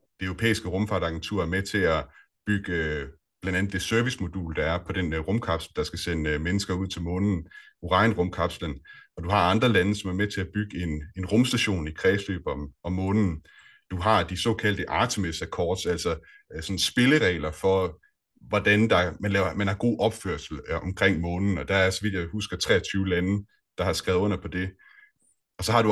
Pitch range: 90-105 Hz